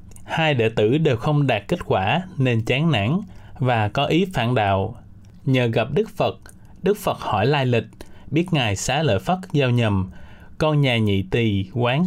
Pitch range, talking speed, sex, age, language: 105-150 Hz, 185 wpm, male, 20-39, Vietnamese